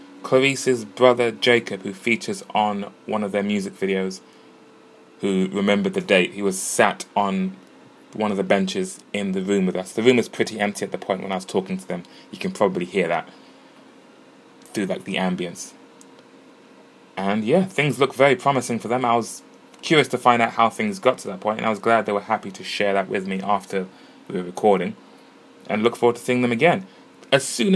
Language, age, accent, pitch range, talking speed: English, 20-39, British, 95-120 Hz, 205 wpm